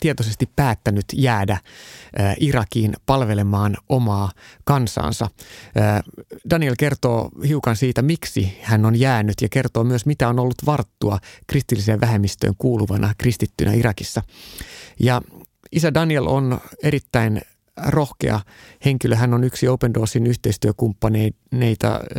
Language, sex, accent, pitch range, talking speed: Finnish, male, native, 105-130 Hz, 110 wpm